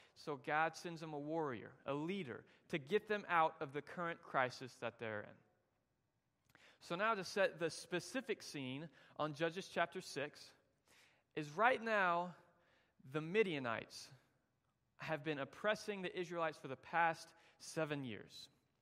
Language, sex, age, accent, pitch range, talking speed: English, male, 30-49, American, 140-185 Hz, 145 wpm